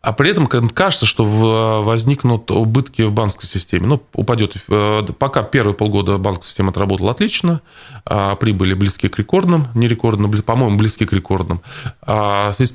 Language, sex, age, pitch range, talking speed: Russian, male, 20-39, 100-125 Hz, 140 wpm